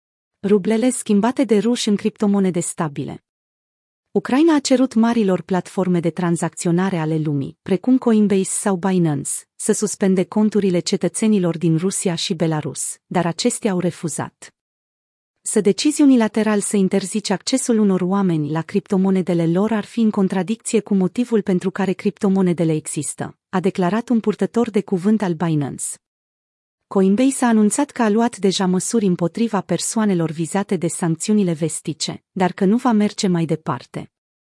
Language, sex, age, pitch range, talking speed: Romanian, female, 30-49, 175-220 Hz, 145 wpm